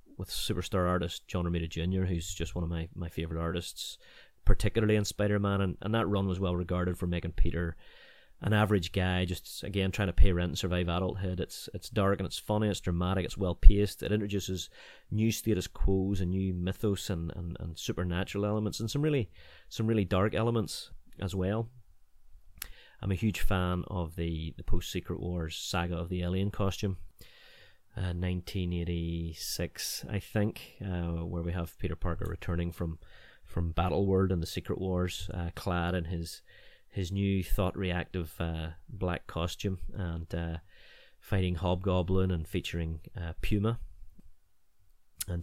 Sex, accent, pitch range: male, British, 85-100 Hz